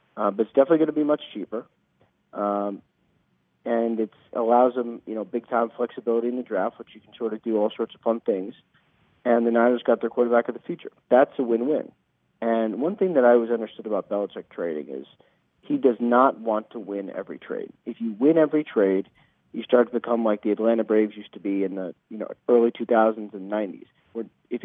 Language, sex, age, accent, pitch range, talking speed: English, male, 40-59, American, 110-125 Hz, 215 wpm